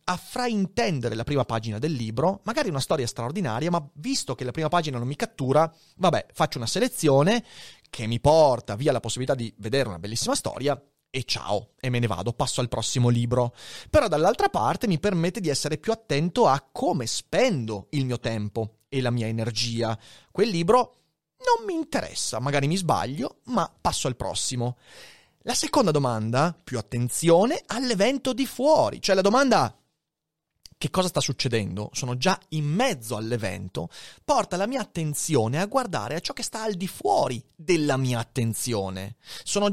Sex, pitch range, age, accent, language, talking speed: male, 125-205 Hz, 30-49, native, Italian, 170 wpm